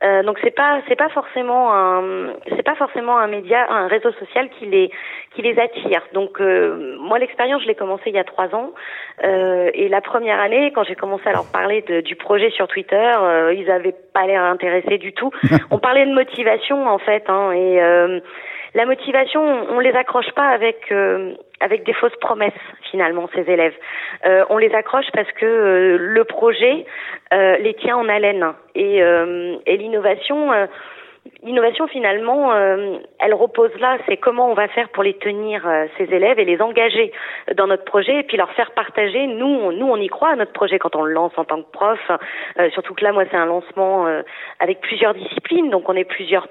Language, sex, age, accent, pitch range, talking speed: French, female, 30-49, French, 190-255 Hz, 210 wpm